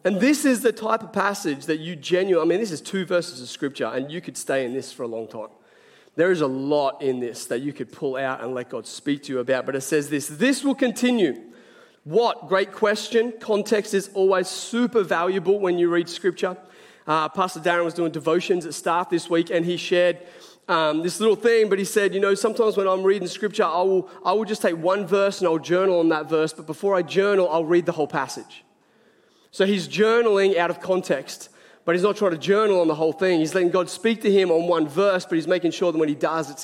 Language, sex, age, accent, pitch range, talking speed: English, male, 30-49, Australian, 170-215 Hz, 240 wpm